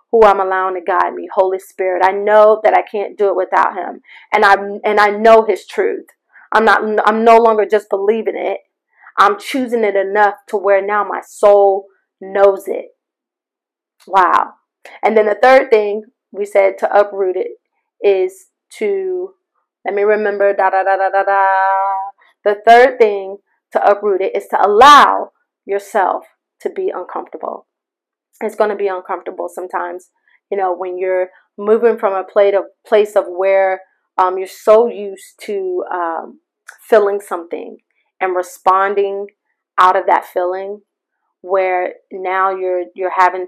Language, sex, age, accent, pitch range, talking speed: English, female, 30-49, American, 195-225 Hz, 155 wpm